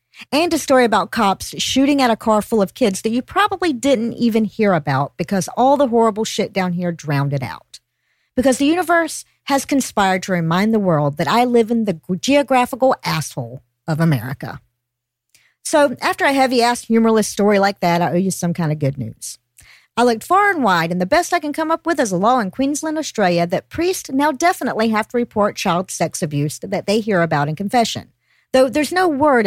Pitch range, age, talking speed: 175-260 Hz, 50-69, 210 wpm